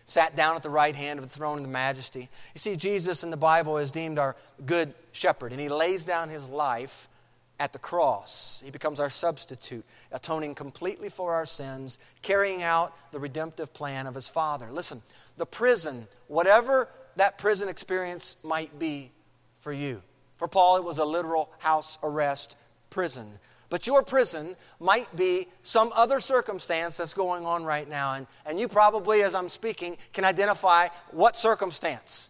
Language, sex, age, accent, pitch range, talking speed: English, male, 40-59, American, 135-185 Hz, 175 wpm